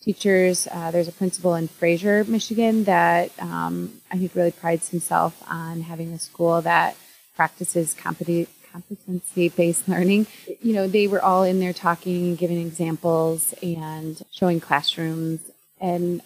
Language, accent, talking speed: English, American, 140 wpm